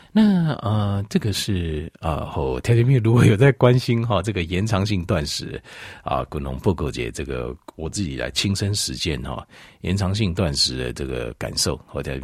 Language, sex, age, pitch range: Chinese, male, 50-69, 75-115 Hz